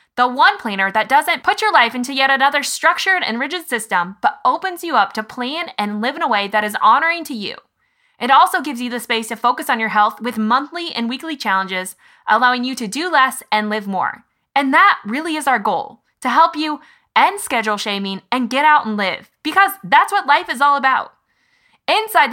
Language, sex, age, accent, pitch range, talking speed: English, female, 20-39, American, 215-315 Hz, 215 wpm